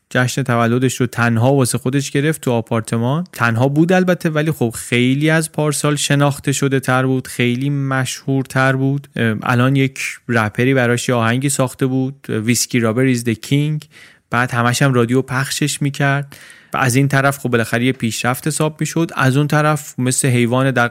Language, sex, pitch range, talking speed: Persian, male, 120-145 Hz, 165 wpm